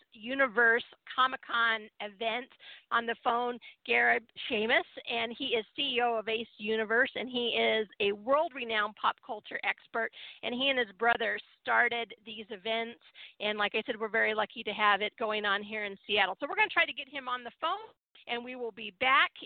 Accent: American